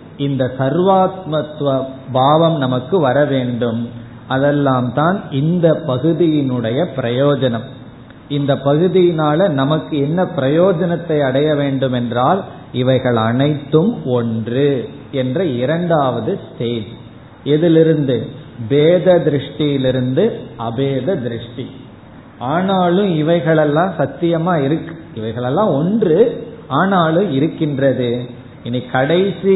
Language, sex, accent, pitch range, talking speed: Tamil, male, native, 125-160 Hz, 80 wpm